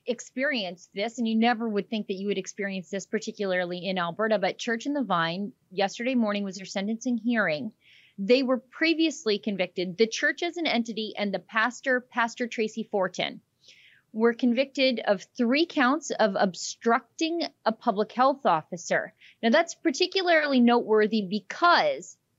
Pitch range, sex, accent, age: 215-290 Hz, female, American, 30-49